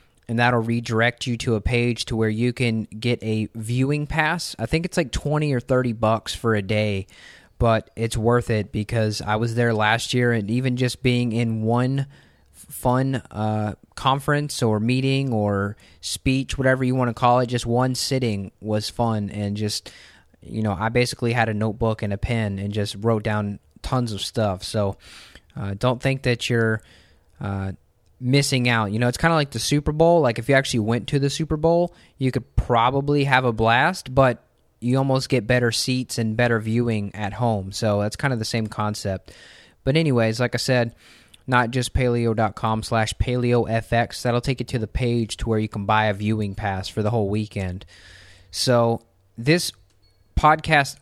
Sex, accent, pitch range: male, American, 105-125 Hz